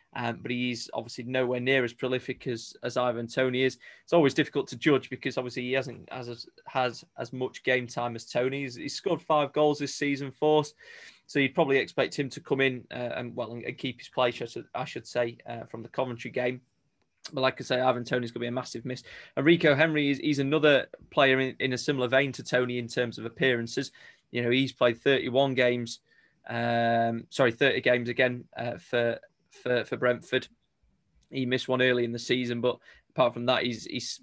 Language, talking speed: English, 215 wpm